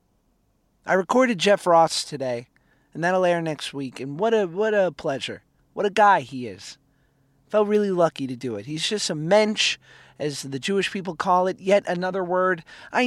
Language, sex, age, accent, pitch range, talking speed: English, male, 30-49, American, 160-205 Hz, 185 wpm